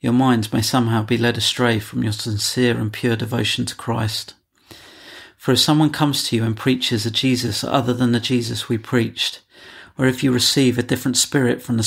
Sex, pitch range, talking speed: male, 115-130 Hz, 200 wpm